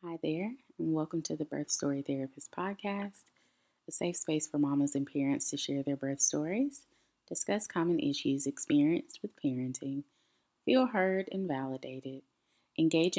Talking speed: 150 wpm